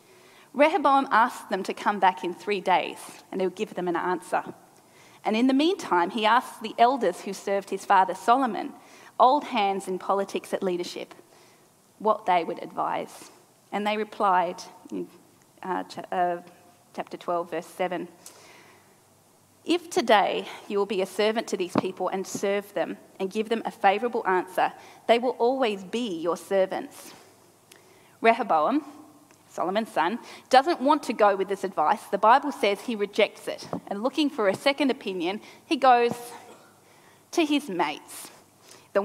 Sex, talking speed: female, 155 wpm